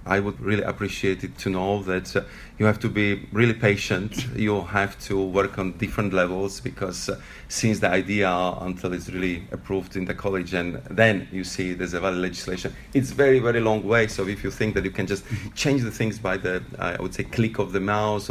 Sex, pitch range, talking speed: male, 90-110 Hz, 225 wpm